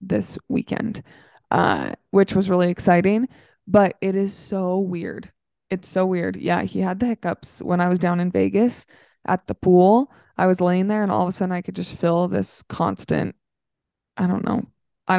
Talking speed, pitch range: 190 wpm, 175-205 Hz